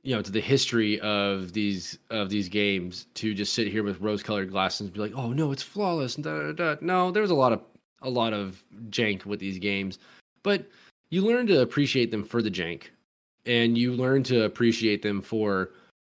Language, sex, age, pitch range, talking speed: English, male, 20-39, 100-120 Hz, 210 wpm